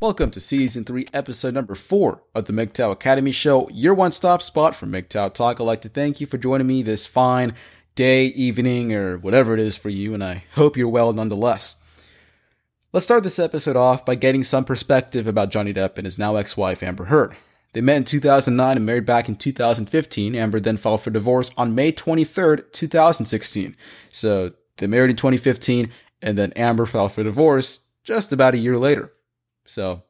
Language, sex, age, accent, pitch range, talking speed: English, male, 30-49, American, 110-140 Hz, 190 wpm